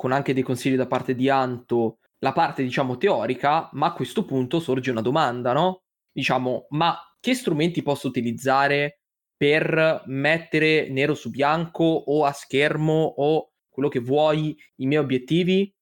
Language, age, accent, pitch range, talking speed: Italian, 20-39, native, 125-160 Hz, 155 wpm